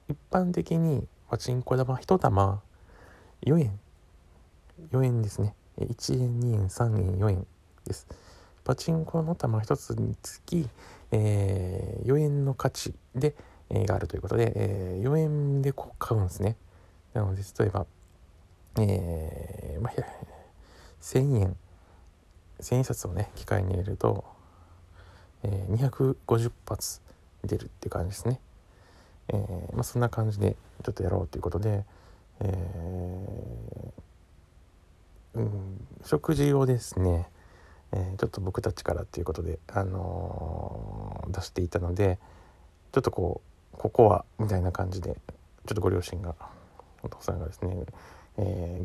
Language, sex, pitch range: Japanese, male, 90-110 Hz